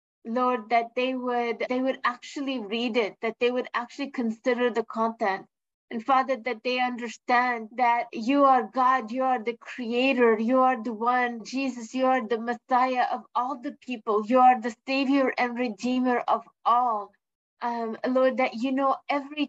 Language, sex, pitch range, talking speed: English, female, 235-265 Hz, 170 wpm